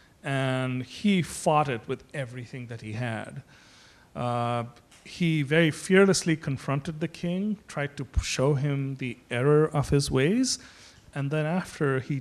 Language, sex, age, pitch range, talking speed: English, male, 40-59, 125-170 Hz, 145 wpm